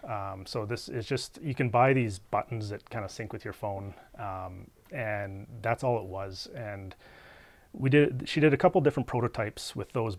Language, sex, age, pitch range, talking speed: English, male, 30-49, 100-125 Hz, 200 wpm